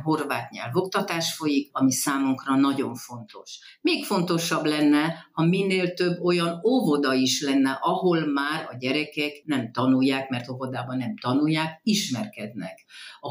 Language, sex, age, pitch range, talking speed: Hungarian, female, 50-69, 130-170 Hz, 130 wpm